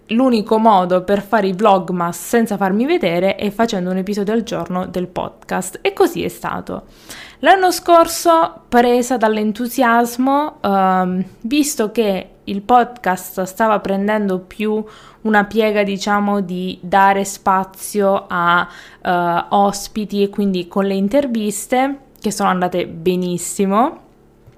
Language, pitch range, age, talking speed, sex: Italian, 185-220 Hz, 20-39, 120 wpm, female